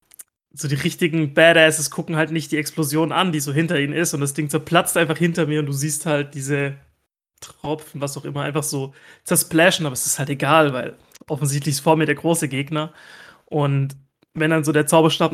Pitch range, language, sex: 145-160 Hz, German, male